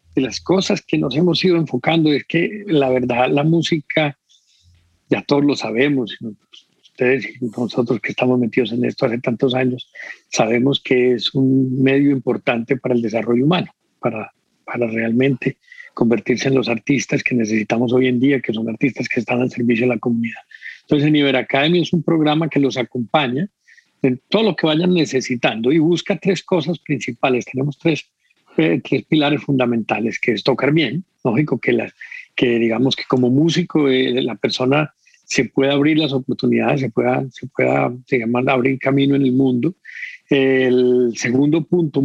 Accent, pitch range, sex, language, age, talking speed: Mexican, 125-150 Hz, male, Spanish, 50-69, 175 wpm